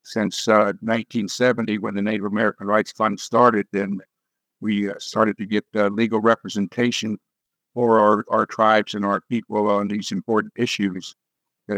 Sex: male